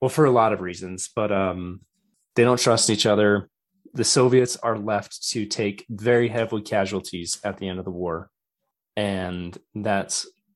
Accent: American